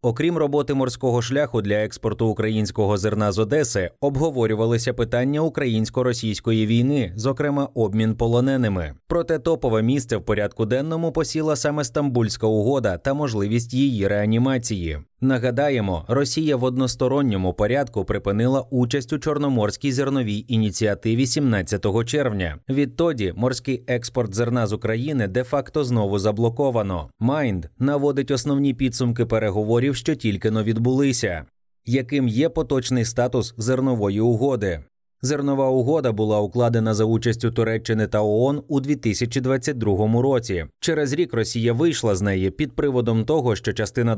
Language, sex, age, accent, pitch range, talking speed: Ukrainian, male, 20-39, native, 110-140 Hz, 120 wpm